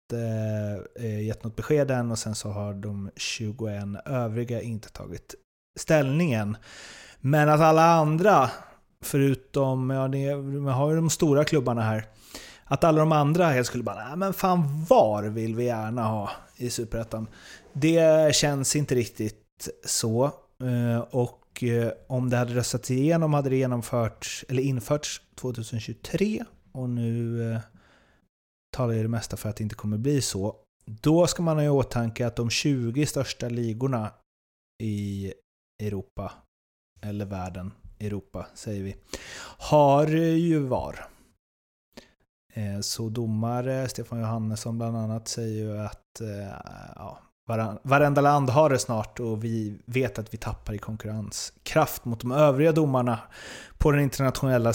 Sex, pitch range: male, 110-140 Hz